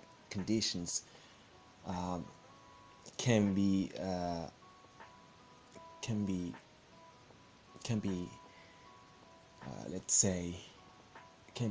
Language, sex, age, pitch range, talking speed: English, male, 20-39, 90-110 Hz, 60 wpm